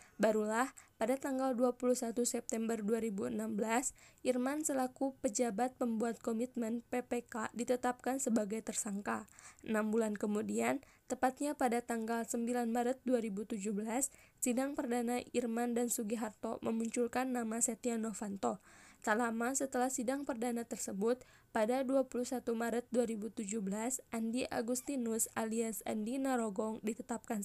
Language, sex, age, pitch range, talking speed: Indonesian, female, 10-29, 230-250 Hz, 105 wpm